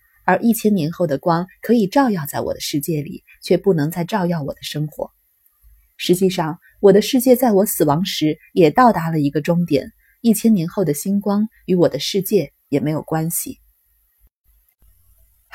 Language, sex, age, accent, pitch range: Chinese, female, 30-49, native, 150-215 Hz